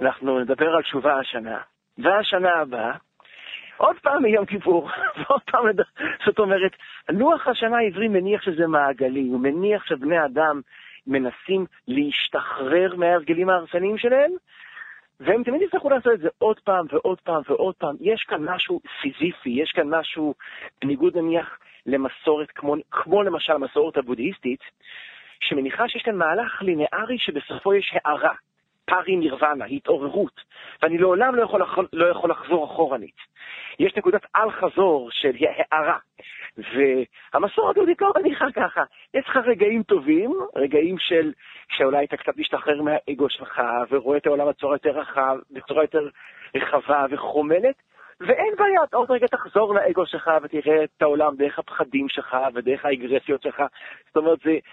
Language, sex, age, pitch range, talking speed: English, male, 40-59, 150-235 Hz, 140 wpm